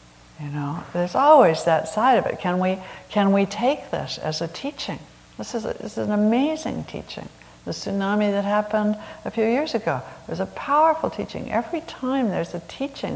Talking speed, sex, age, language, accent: 190 wpm, female, 60-79, English, American